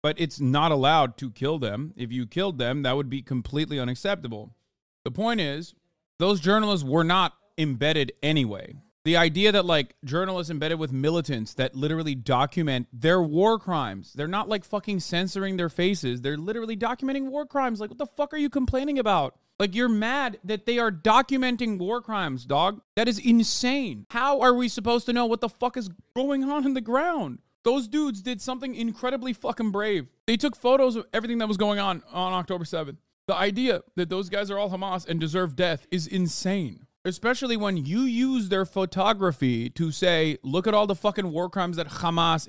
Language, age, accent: English, 30-49, American